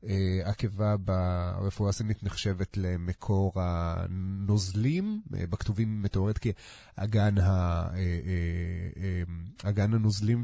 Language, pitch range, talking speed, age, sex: Hebrew, 95-120 Hz, 65 wpm, 30-49, male